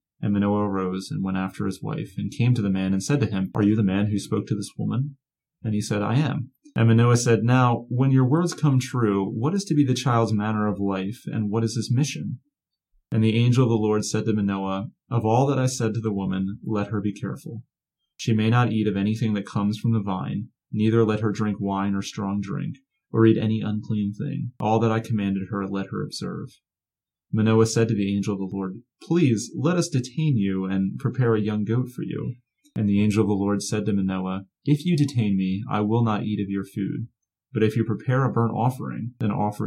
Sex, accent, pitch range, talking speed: male, American, 100-125 Hz, 235 wpm